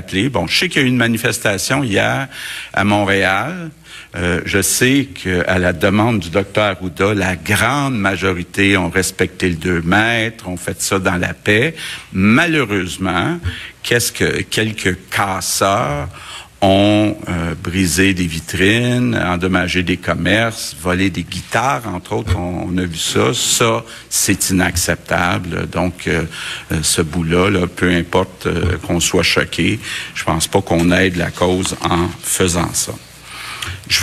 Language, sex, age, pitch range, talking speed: French, male, 60-79, 90-105 Hz, 150 wpm